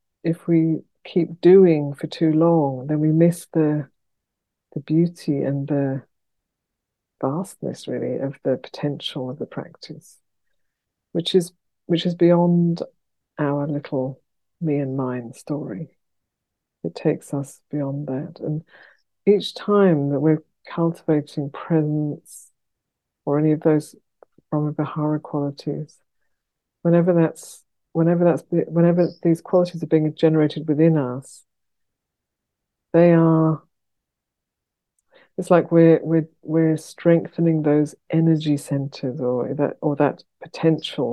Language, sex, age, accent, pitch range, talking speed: English, female, 50-69, British, 140-165 Hz, 115 wpm